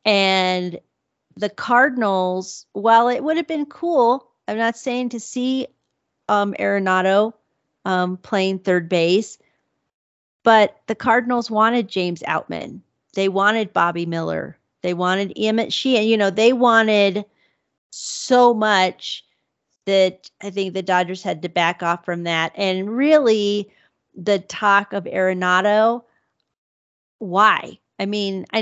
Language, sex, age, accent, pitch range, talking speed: English, female, 40-59, American, 185-220 Hz, 130 wpm